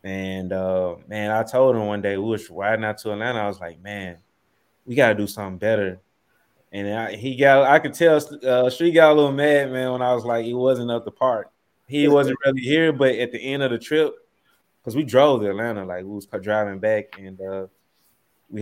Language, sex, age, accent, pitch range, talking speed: English, male, 20-39, American, 105-130 Hz, 225 wpm